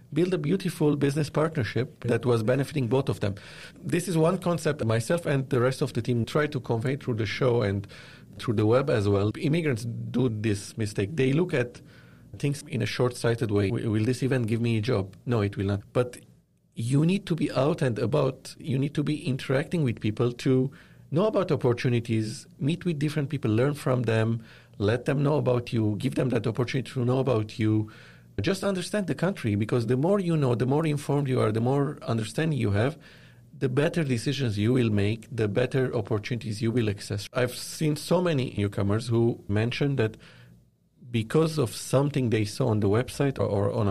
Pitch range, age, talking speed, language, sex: 110-145 Hz, 50-69, 200 wpm, English, male